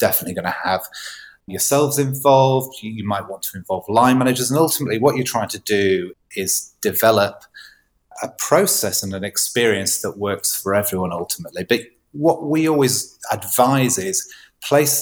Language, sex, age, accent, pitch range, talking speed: English, male, 30-49, British, 105-135 Hz, 155 wpm